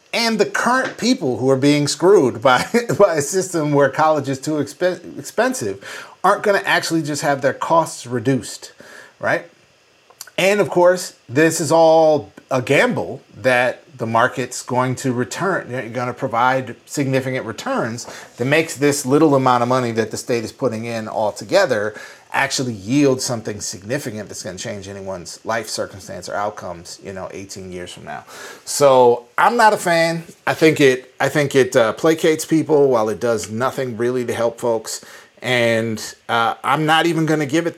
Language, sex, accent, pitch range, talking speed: English, male, American, 120-155 Hz, 175 wpm